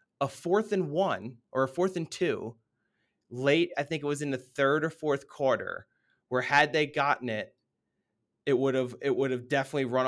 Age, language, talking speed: 30-49, English, 195 wpm